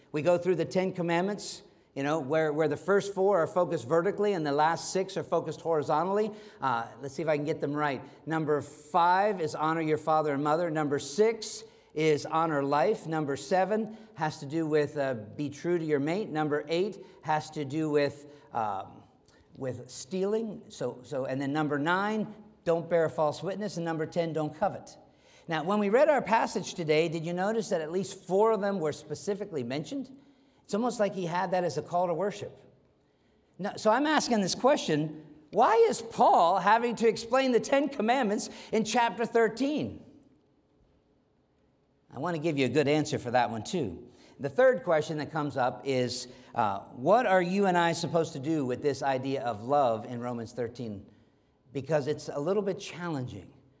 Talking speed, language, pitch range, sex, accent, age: 190 wpm, English, 150-200 Hz, male, American, 50-69